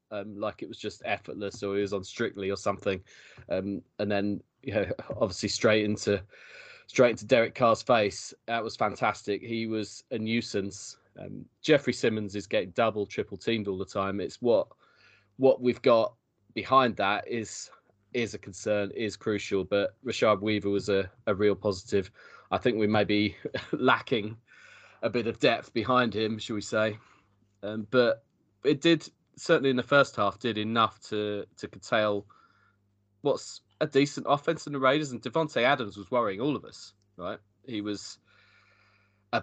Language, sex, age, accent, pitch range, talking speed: English, male, 20-39, British, 100-120 Hz, 170 wpm